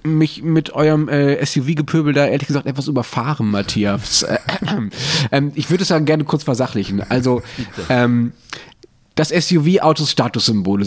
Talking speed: 145 wpm